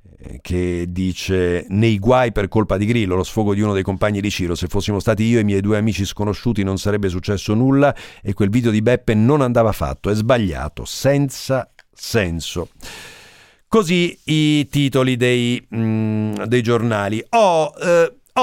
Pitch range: 100-145 Hz